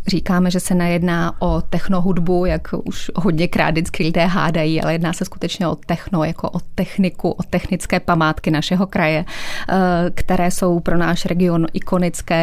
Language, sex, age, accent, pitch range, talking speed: Czech, female, 20-39, native, 175-200 Hz, 155 wpm